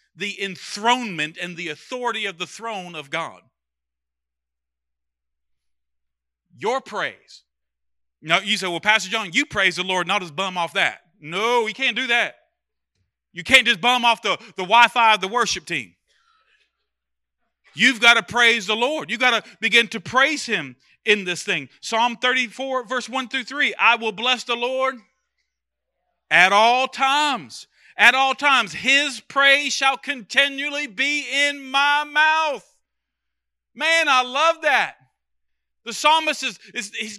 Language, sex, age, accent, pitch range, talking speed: English, male, 40-59, American, 180-270 Hz, 150 wpm